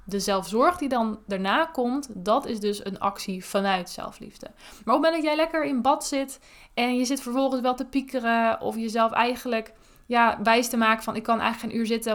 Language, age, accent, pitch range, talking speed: Dutch, 20-39, Dutch, 200-235 Hz, 215 wpm